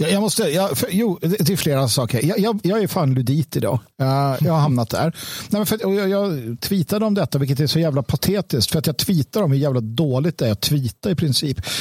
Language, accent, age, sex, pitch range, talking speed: Swedish, native, 50-69, male, 145-205 Hz, 235 wpm